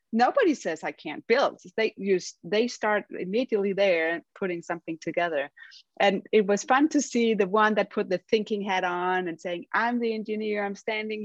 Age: 30-49